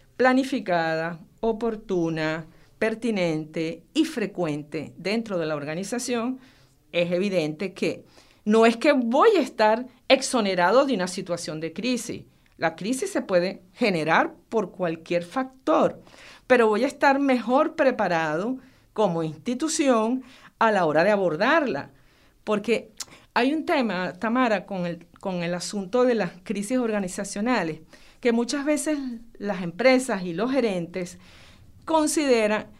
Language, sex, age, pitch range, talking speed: Spanish, female, 50-69, 170-245 Hz, 125 wpm